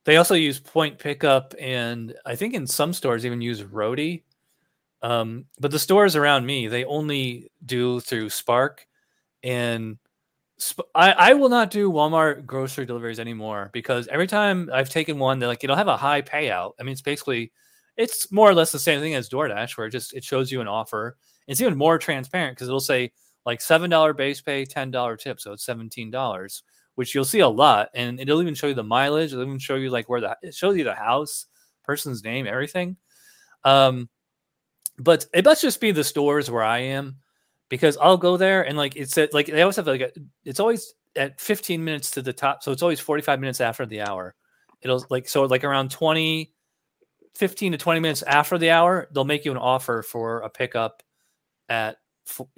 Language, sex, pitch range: English, male, 120-160 Hz